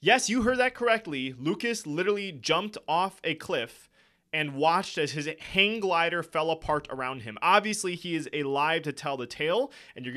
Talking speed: 185 wpm